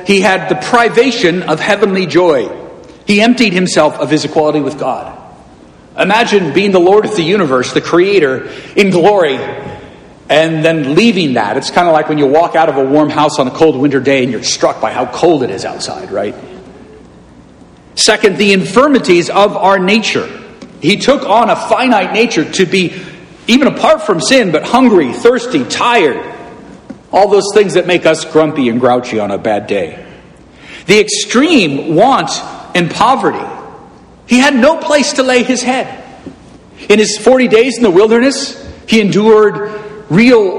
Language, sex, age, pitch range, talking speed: English, male, 50-69, 155-230 Hz, 170 wpm